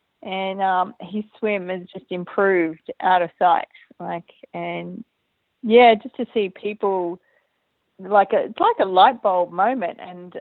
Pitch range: 180-225 Hz